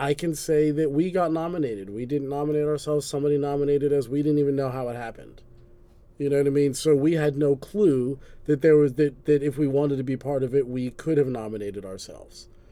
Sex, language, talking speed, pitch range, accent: male, English, 230 wpm, 135-170 Hz, American